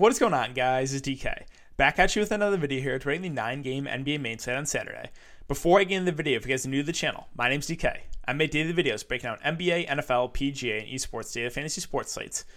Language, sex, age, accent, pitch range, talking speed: English, male, 20-39, American, 125-155 Hz, 265 wpm